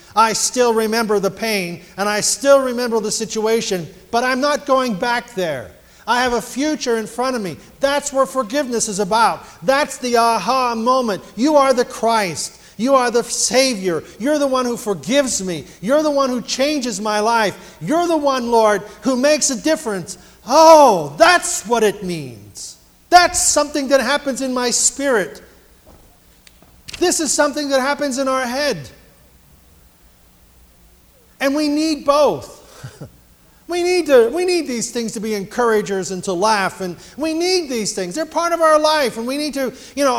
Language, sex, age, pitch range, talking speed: English, male, 50-69, 195-275 Hz, 175 wpm